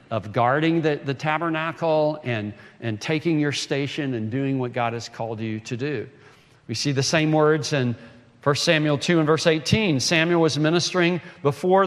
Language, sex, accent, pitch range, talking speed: English, male, American, 135-170 Hz, 175 wpm